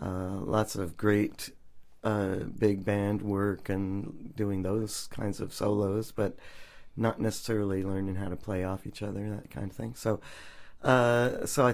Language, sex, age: English, male, 50-69